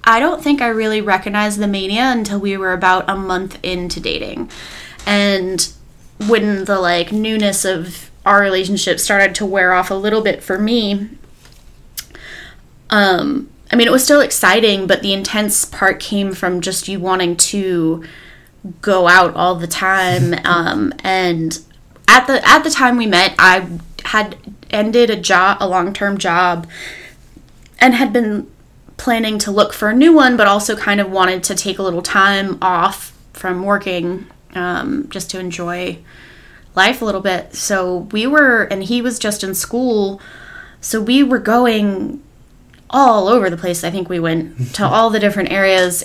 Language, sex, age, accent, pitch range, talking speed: English, female, 20-39, American, 180-215 Hz, 170 wpm